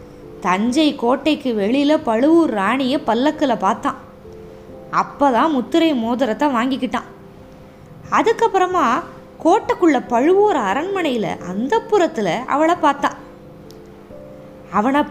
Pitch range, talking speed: 225-315 Hz, 80 wpm